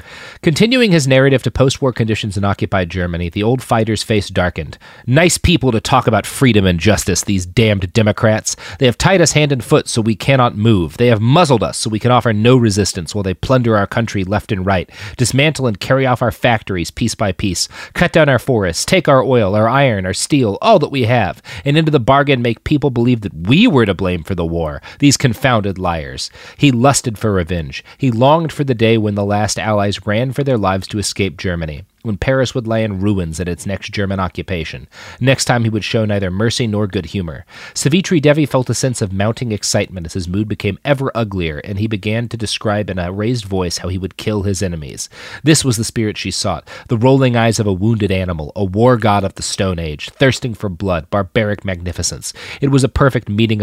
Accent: American